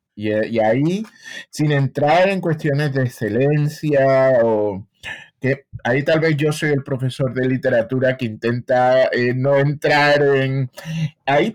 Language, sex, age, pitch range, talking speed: Spanish, male, 30-49, 110-145 Hz, 135 wpm